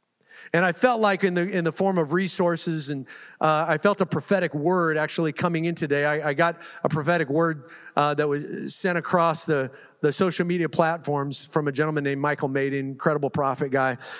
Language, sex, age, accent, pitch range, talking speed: English, male, 40-59, American, 160-210 Hz, 200 wpm